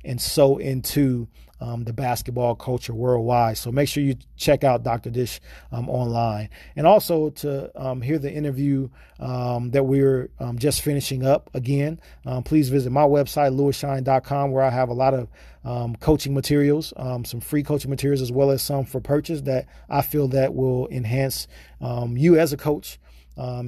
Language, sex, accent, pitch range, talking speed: English, male, American, 125-140 Hz, 180 wpm